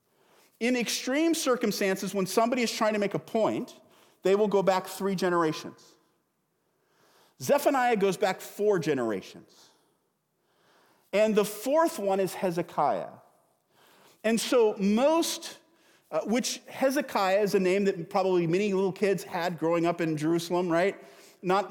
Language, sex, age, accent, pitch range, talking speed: English, male, 50-69, American, 165-220 Hz, 135 wpm